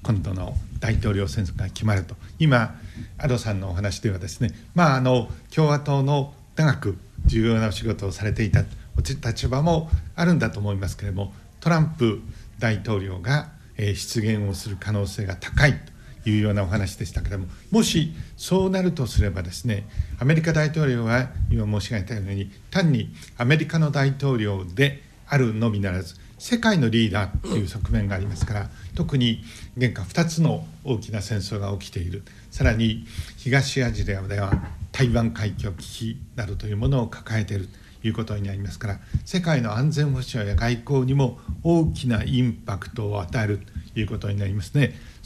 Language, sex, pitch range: Japanese, male, 100-125 Hz